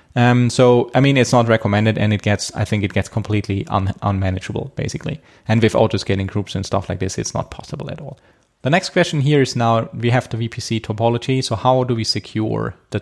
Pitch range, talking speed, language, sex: 110-130 Hz, 225 wpm, English, male